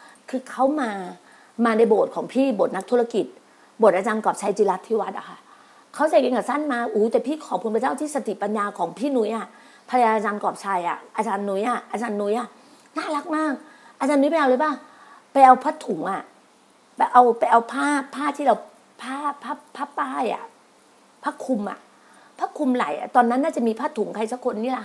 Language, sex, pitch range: Thai, female, 230-300 Hz